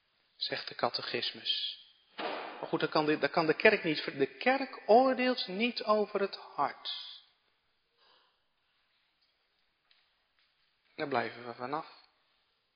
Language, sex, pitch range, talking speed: Dutch, male, 150-245 Hz, 105 wpm